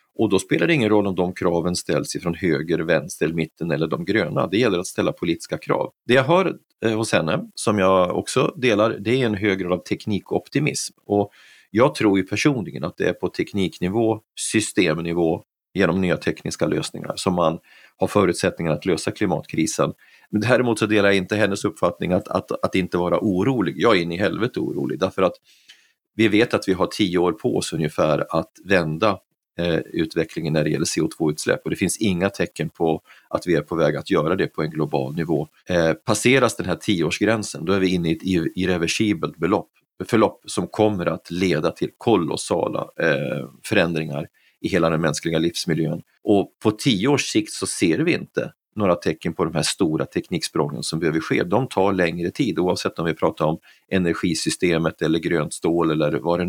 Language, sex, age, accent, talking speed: Swedish, male, 30-49, native, 190 wpm